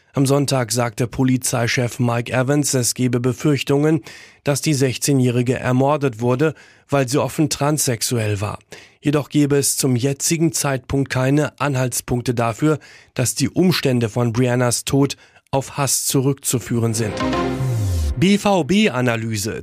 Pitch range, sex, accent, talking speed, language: 120-145 Hz, male, German, 120 wpm, German